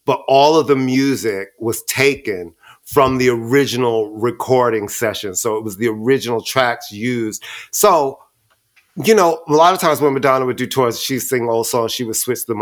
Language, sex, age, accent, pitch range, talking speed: English, male, 30-49, American, 120-145 Hz, 185 wpm